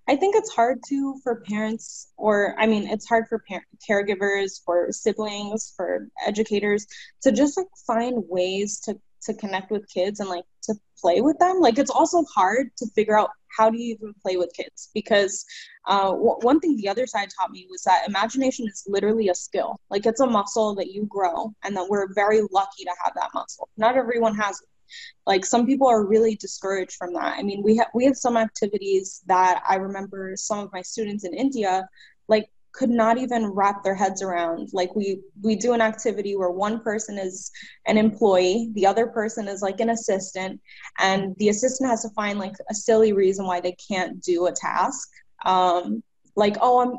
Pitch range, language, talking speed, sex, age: 195-230 Hz, English, 200 wpm, female, 10-29